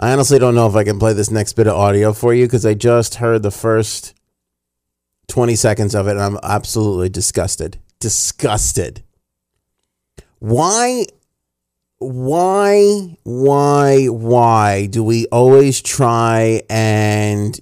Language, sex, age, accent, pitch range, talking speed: English, male, 30-49, American, 105-150 Hz, 135 wpm